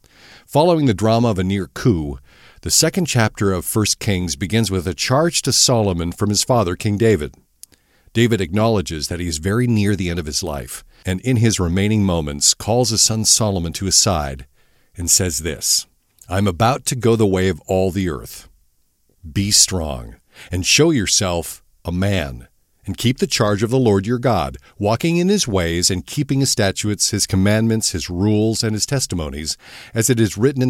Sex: male